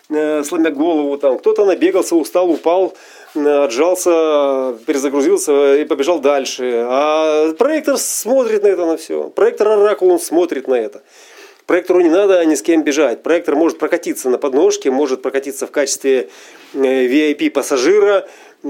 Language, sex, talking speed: Russian, male, 140 wpm